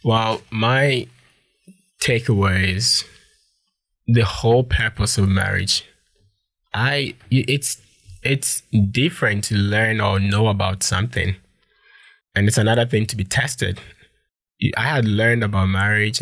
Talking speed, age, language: 115 wpm, 20-39, English